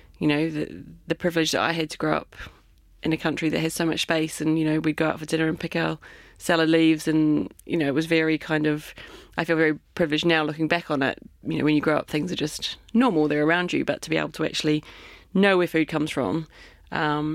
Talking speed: 255 wpm